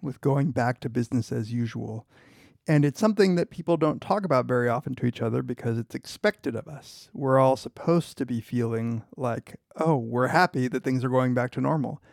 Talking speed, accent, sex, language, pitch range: 210 wpm, American, male, English, 125-155 Hz